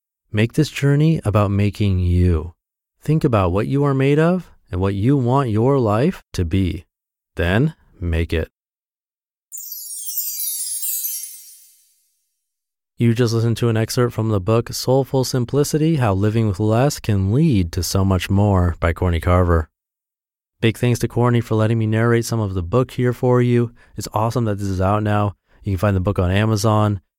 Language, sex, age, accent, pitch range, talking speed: English, male, 30-49, American, 90-120 Hz, 170 wpm